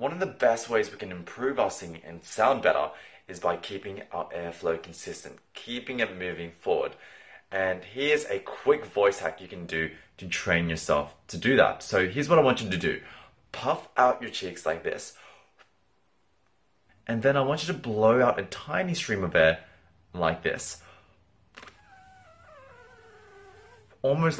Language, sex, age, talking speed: English, male, 20-39, 165 wpm